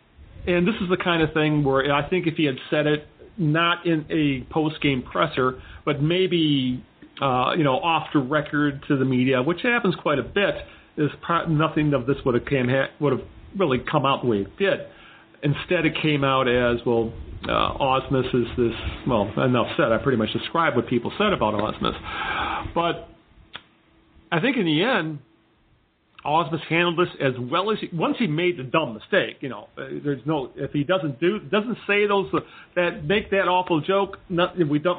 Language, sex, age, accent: English, male, 40-59, American